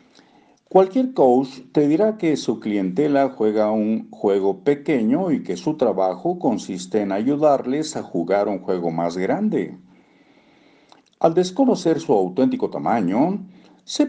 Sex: male